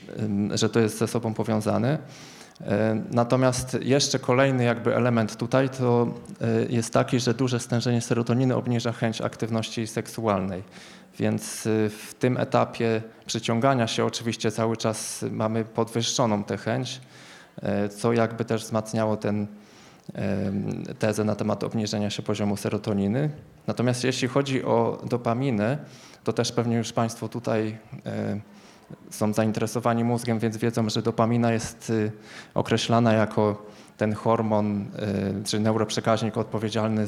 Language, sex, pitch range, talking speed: Polish, male, 110-120 Hz, 120 wpm